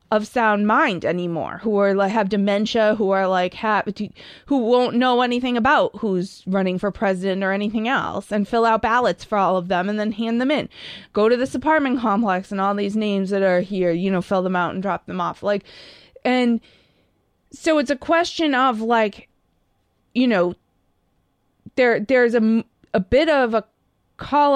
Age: 20-39